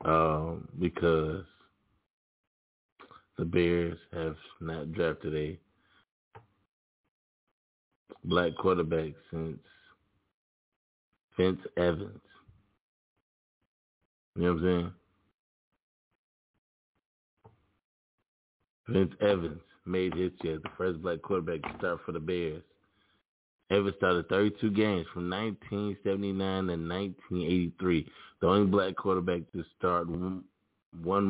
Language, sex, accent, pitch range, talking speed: English, male, American, 85-100 Hz, 90 wpm